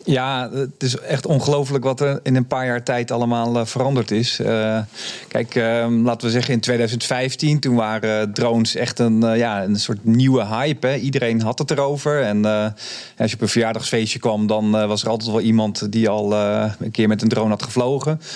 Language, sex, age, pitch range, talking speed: Dutch, male, 40-59, 110-140 Hz, 215 wpm